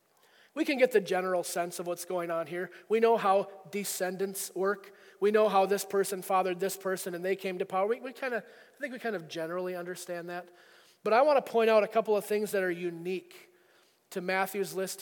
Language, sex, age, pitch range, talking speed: English, male, 30-49, 180-220 Hz, 210 wpm